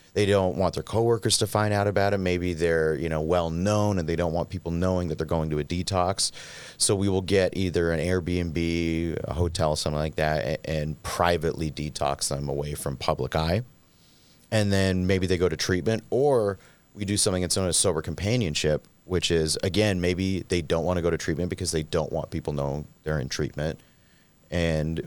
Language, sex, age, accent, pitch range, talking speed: English, male, 30-49, American, 80-100 Hz, 200 wpm